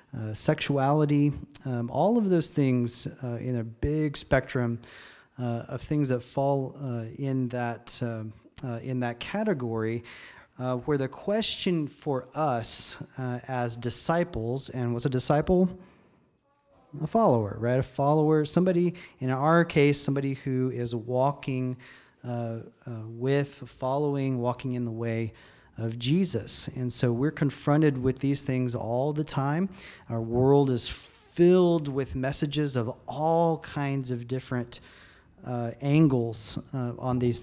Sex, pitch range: male, 120-145 Hz